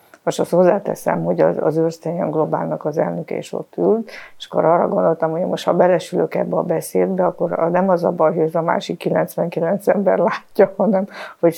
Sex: female